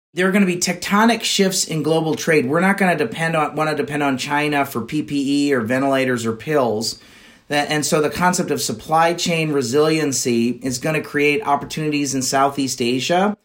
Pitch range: 135-170 Hz